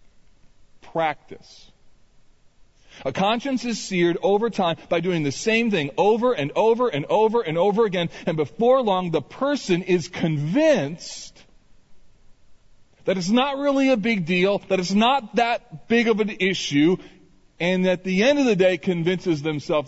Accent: American